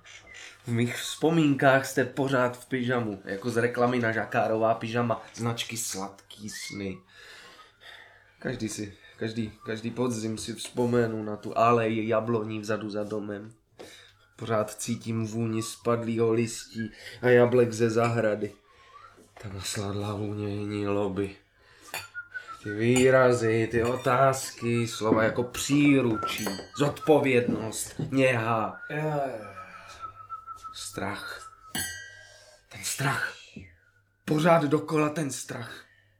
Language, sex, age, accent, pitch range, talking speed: Czech, male, 20-39, native, 105-135 Hz, 100 wpm